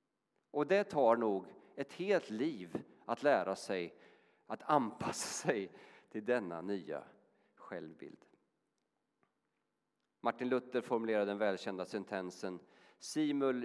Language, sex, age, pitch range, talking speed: Swedish, male, 40-59, 110-145 Hz, 105 wpm